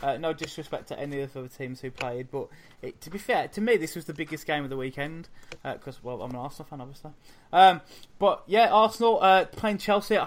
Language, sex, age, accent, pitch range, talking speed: English, male, 20-39, British, 135-170 Hz, 240 wpm